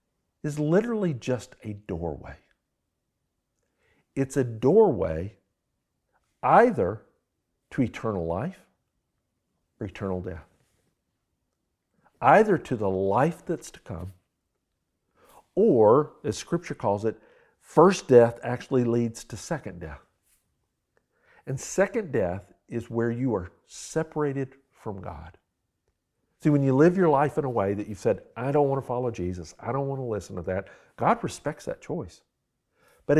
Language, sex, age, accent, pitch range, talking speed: English, male, 50-69, American, 105-155 Hz, 135 wpm